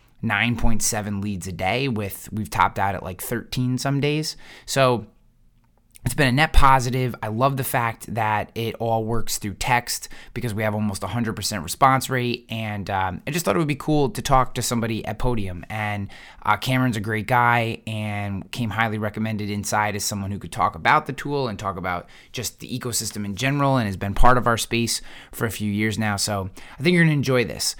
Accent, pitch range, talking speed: American, 105-125 Hz, 215 wpm